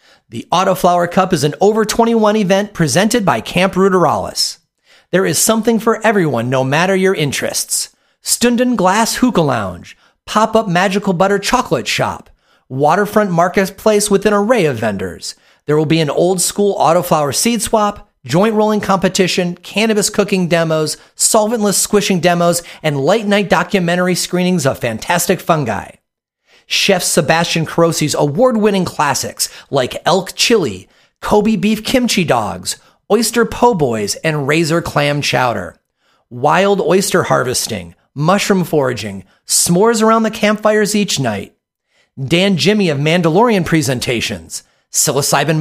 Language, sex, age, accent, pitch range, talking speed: English, male, 40-59, American, 155-210 Hz, 125 wpm